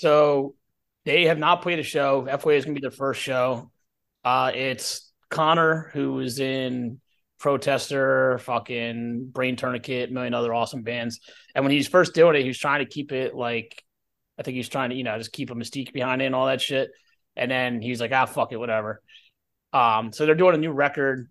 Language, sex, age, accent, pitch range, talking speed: English, male, 30-49, American, 115-140 Hz, 215 wpm